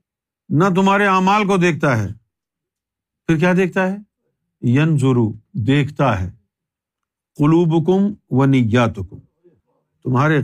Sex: male